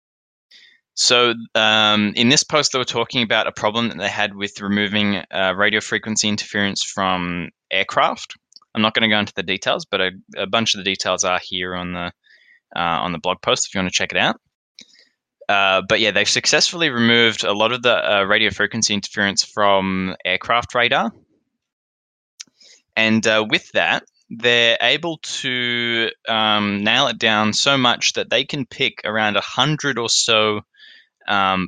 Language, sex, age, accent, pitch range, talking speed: English, male, 10-29, Australian, 100-120 Hz, 175 wpm